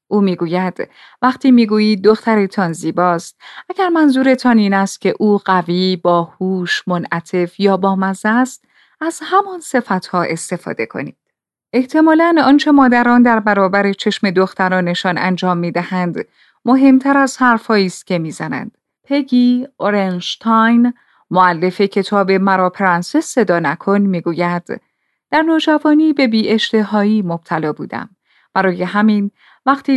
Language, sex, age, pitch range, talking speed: Persian, female, 30-49, 185-250 Hz, 110 wpm